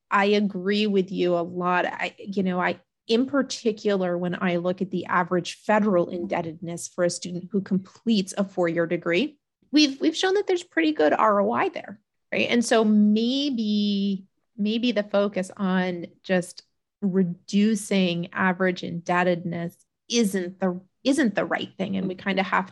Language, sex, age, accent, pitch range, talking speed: English, female, 30-49, American, 185-225 Hz, 155 wpm